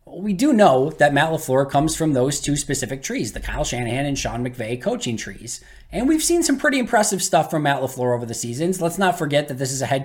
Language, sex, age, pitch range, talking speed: English, male, 20-39, 130-160 Hz, 245 wpm